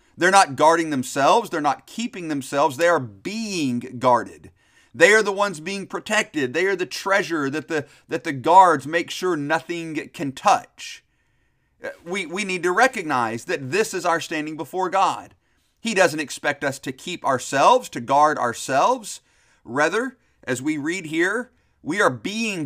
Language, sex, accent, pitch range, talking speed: English, male, American, 145-190 Hz, 165 wpm